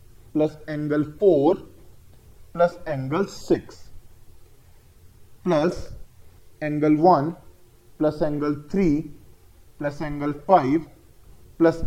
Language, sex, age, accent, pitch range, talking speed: Hindi, male, 20-39, native, 150-195 Hz, 80 wpm